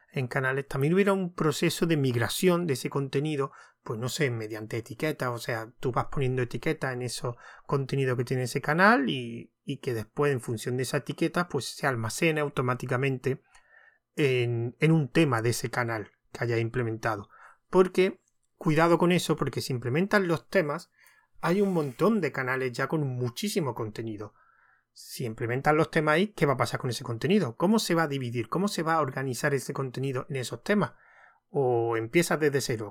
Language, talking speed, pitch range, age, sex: Spanish, 185 wpm, 125-160 Hz, 30-49, male